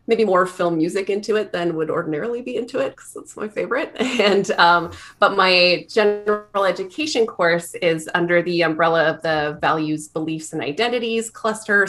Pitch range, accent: 155-190 Hz, American